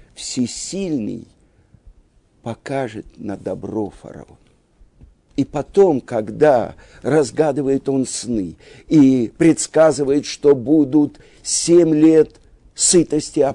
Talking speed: 85 wpm